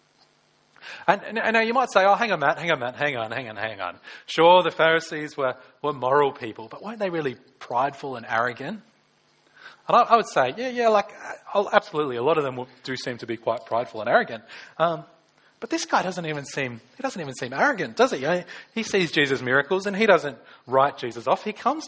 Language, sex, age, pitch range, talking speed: English, male, 30-49, 140-185 Hz, 230 wpm